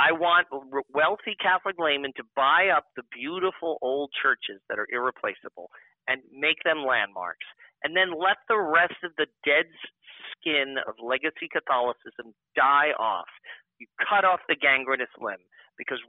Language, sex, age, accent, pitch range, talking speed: English, male, 40-59, American, 145-215 Hz, 150 wpm